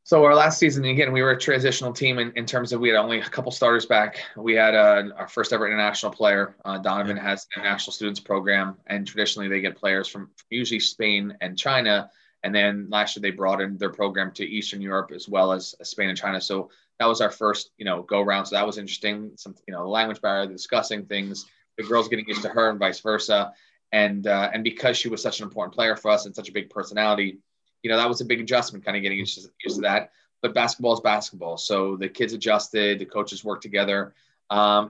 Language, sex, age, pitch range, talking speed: English, male, 20-39, 100-115 Hz, 235 wpm